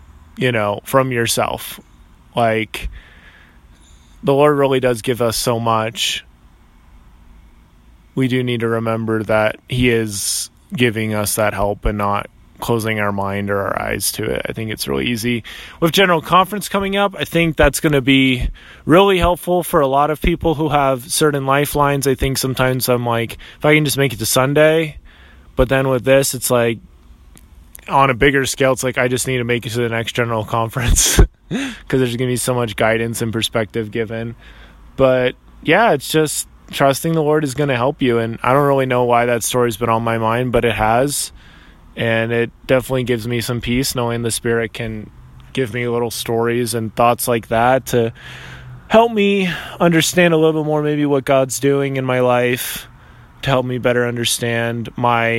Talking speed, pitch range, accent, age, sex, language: 190 wpm, 110-135 Hz, American, 20-39, male, English